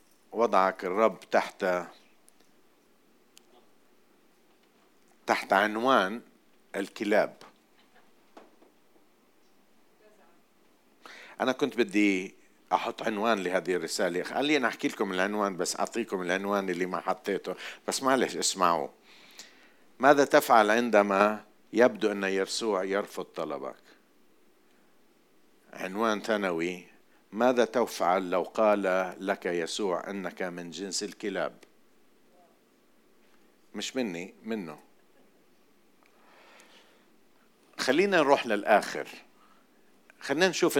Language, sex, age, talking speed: Arabic, male, 50-69, 80 wpm